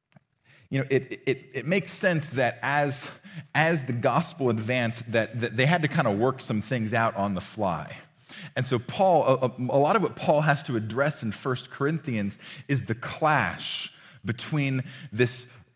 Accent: American